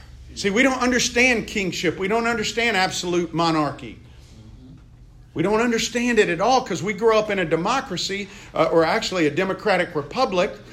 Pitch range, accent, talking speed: 125-205 Hz, American, 160 wpm